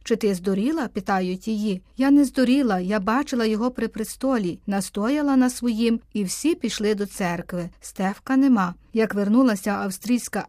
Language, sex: Ukrainian, female